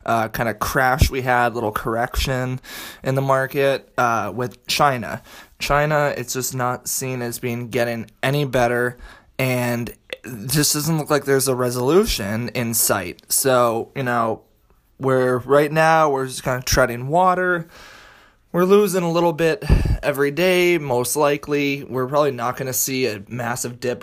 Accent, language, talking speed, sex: American, English, 160 wpm, male